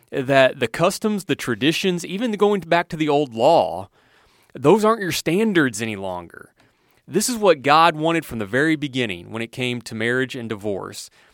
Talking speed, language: 180 wpm, English